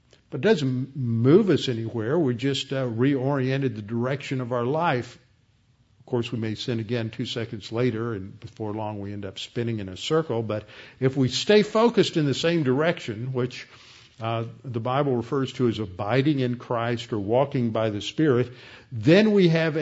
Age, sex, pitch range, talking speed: 50-69, male, 115-140 Hz, 185 wpm